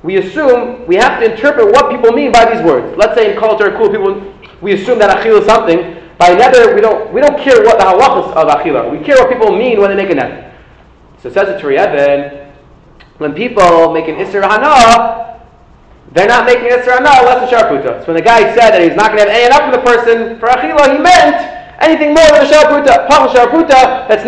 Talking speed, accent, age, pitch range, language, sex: 225 wpm, American, 30-49, 185-270 Hz, English, male